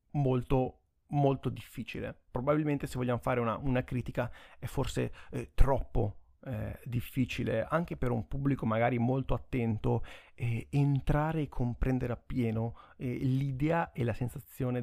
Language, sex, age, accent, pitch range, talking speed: Italian, male, 30-49, native, 120-145 Hz, 135 wpm